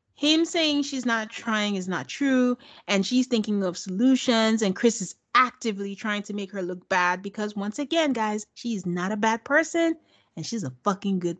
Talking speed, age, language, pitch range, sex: 195 wpm, 30-49, English, 190-260 Hz, female